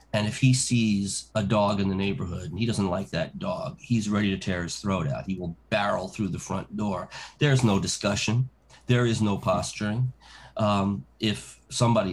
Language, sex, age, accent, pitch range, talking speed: English, male, 40-59, American, 95-115 Hz, 195 wpm